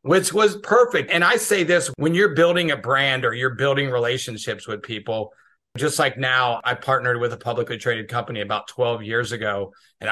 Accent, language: American, English